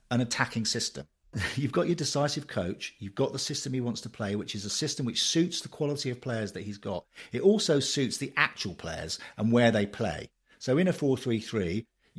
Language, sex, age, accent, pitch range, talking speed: English, male, 50-69, British, 110-150 Hz, 210 wpm